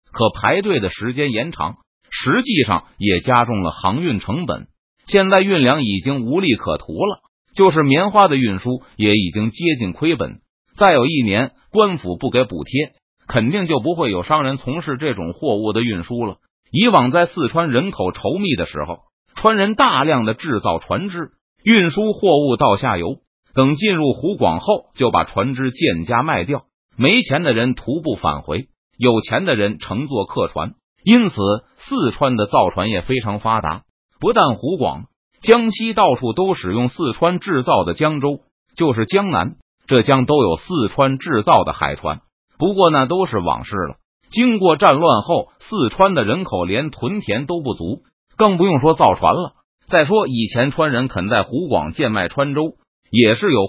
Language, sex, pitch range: Chinese, male, 115-185 Hz